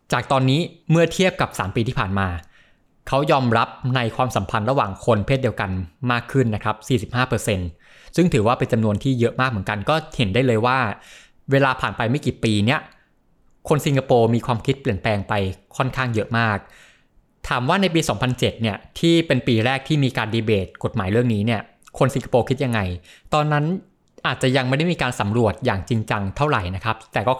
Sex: male